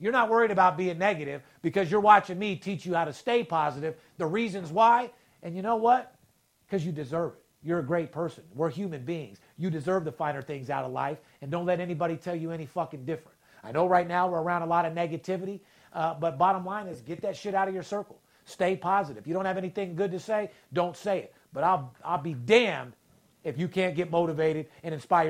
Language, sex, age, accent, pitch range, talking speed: English, male, 50-69, American, 155-195 Hz, 230 wpm